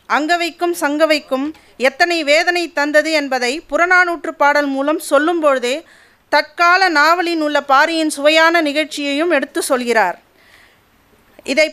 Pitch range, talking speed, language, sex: 280-330 Hz, 95 wpm, Tamil, female